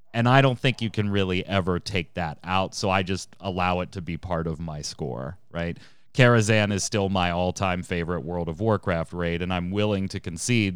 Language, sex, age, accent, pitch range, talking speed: English, male, 30-49, American, 90-110 Hz, 210 wpm